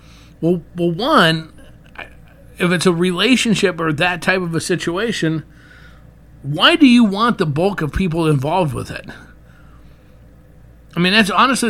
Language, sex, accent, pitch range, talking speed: English, male, American, 150-190 Hz, 145 wpm